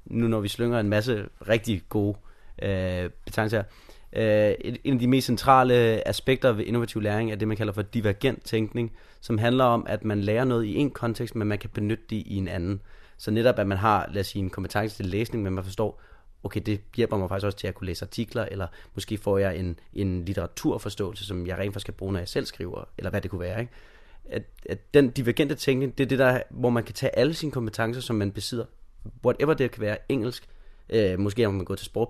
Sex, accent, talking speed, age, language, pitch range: male, native, 230 wpm, 30-49, Danish, 100-120 Hz